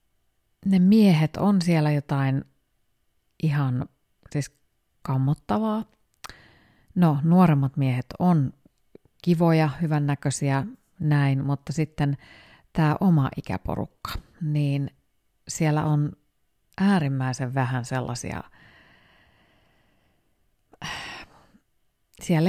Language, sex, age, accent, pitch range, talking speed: Finnish, female, 30-49, native, 130-165 Hz, 70 wpm